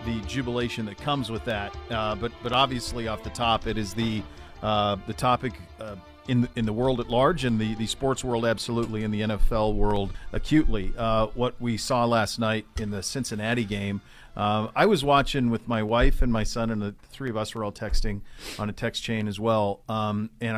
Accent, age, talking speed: American, 40-59, 215 wpm